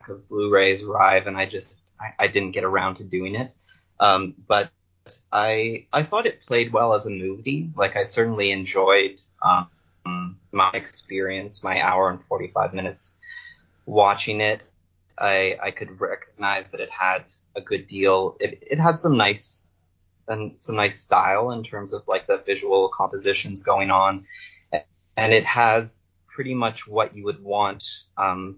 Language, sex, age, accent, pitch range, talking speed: English, male, 30-49, American, 95-130 Hz, 160 wpm